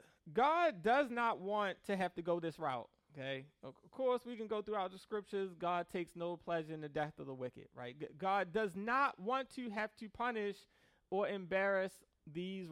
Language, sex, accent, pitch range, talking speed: English, male, American, 180-250 Hz, 195 wpm